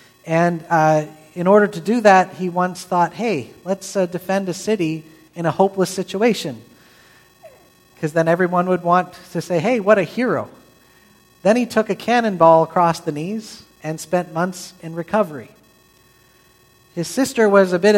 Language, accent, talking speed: English, American, 165 wpm